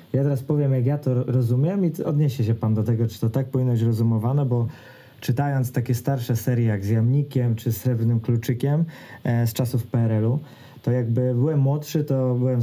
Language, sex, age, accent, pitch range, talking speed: Polish, male, 20-39, native, 120-135 Hz, 190 wpm